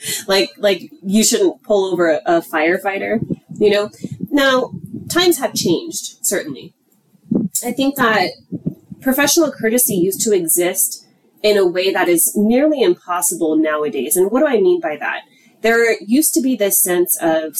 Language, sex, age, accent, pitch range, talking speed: English, female, 20-39, American, 180-240 Hz, 155 wpm